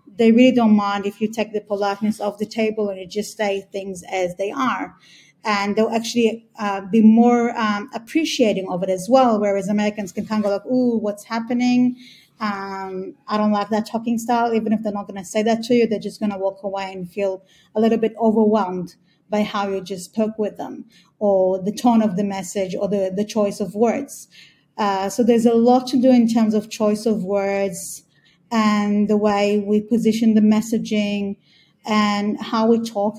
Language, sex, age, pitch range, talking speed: English, female, 30-49, 200-225 Hz, 205 wpm